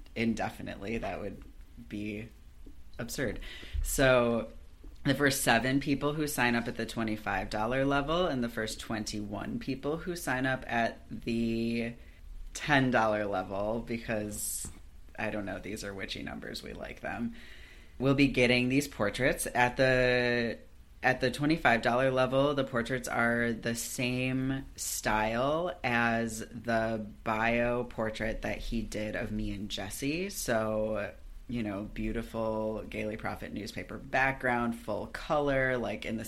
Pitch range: 105-125 Hz